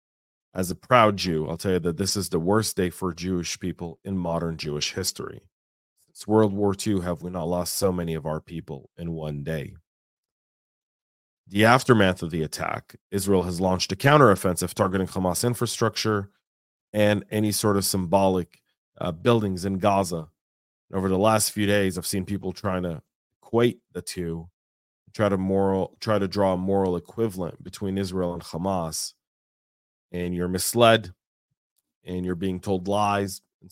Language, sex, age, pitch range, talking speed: English, male, 30-49, 85-105 Hz, 160 wpm